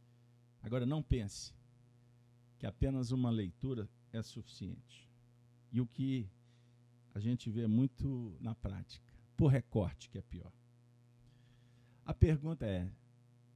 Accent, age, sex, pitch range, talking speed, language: Brazilian, 50-69, male, 115-120 Hz, 115 wpm, Portuguese